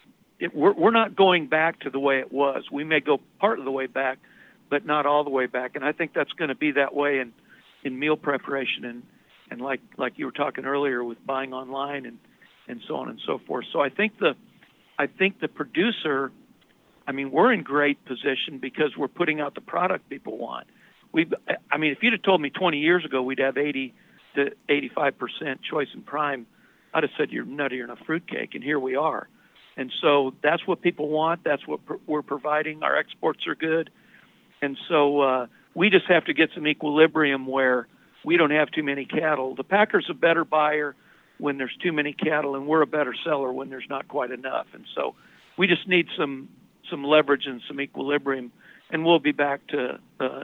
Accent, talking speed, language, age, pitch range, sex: American, 210 wpm, English, 50-69, 135-160 Hz, male